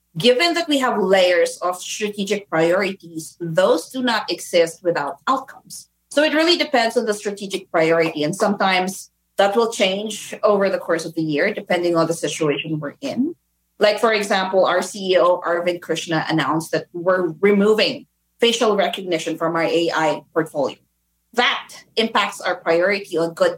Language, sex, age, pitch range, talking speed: English, female, 20-39, 165-220 Hz, 160 wpm